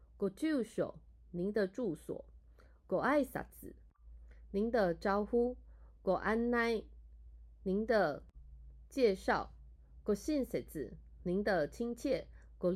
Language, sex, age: Japanese, female, 30-49